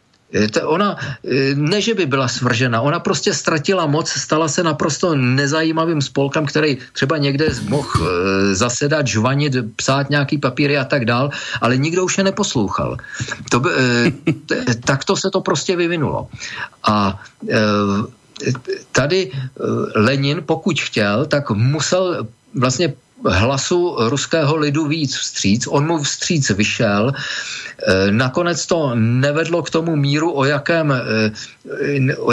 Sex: male